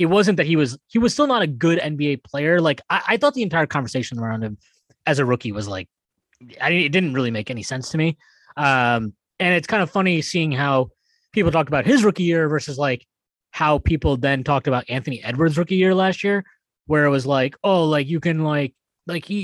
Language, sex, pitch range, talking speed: English, male, 140-195 Hz, 230 wpm